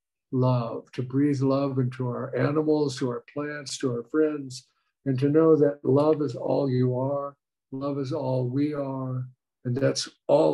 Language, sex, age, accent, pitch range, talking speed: English, male, 60-79, American, 125-150 Hz, 170 wpm